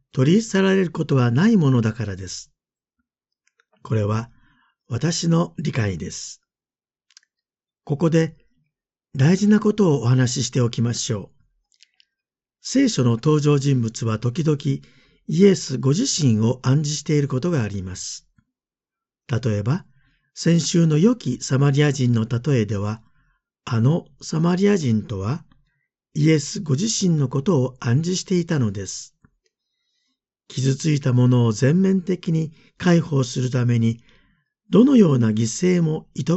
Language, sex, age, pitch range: Japanese, male, 50-69, 120-170 Hz